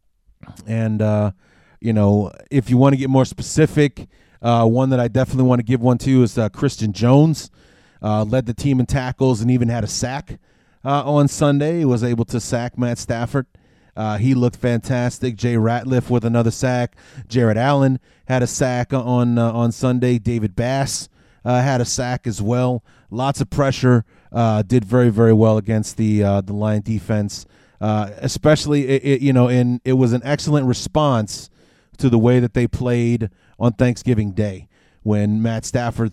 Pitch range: 105-125 Hz